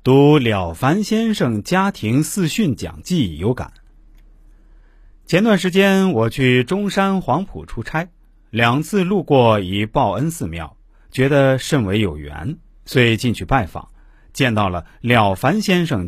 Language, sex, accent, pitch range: Chinese, male, native, 100-155 Hz